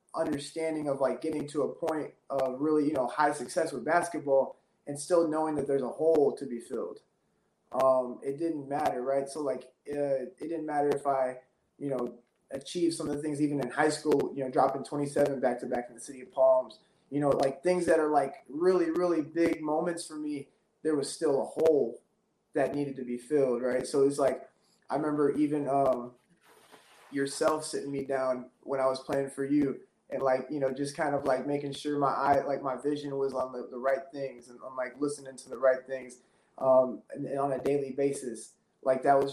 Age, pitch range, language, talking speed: 20-39, 135-155 Hz, English, 215 wpm